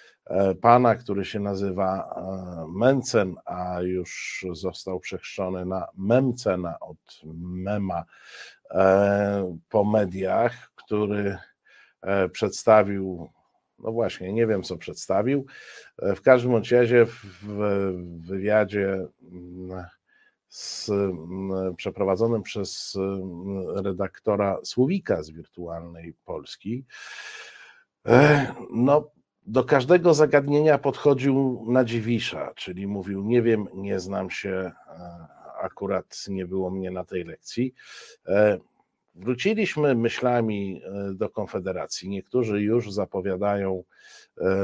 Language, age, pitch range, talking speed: Polish, 50-69, 95-125 Hz, 85 wpm